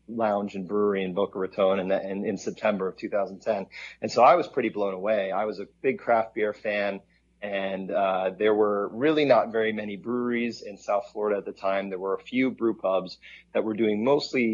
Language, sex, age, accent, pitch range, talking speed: English, male, 30-49, American, 95-105 Hz, 210 wpm